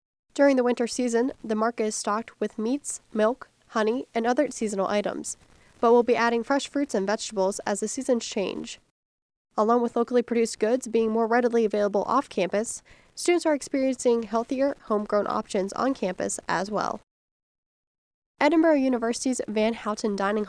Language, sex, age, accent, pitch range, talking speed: English, female, 10-29, American, 210-245 Hz, 155 wpm